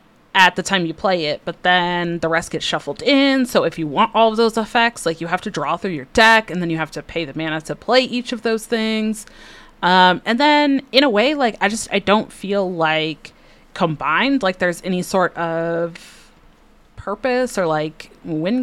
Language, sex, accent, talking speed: English, female, American, 215 wpm